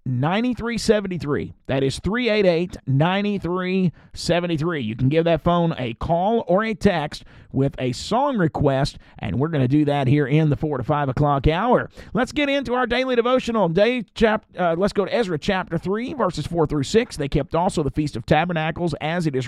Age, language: 40-59, English